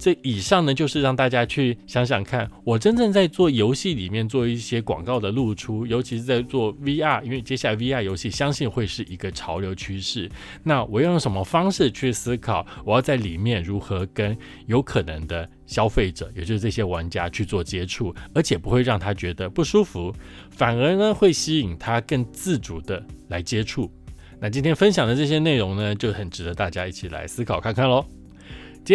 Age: 20-39